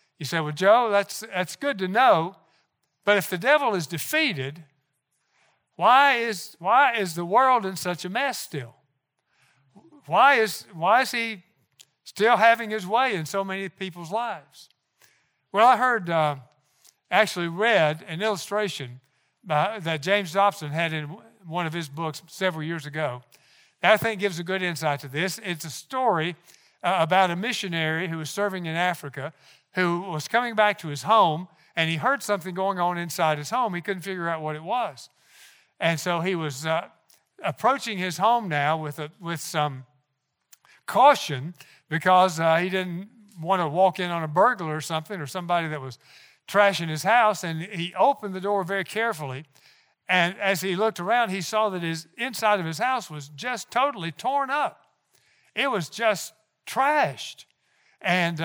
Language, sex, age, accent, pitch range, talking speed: English, male, 60-79, American, 155-210 Hz, 175 wpm